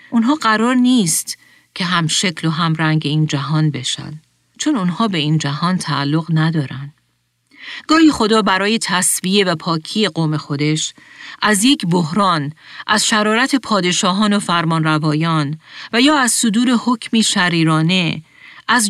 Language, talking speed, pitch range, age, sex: Persian, 135 wpm, 155-210 Hz, 40-59, female